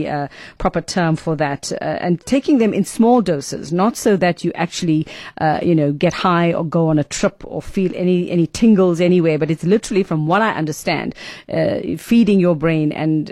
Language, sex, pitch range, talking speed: English, female, 165-200 Hz, 205 wpm